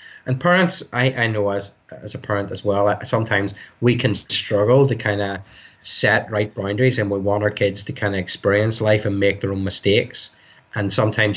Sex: male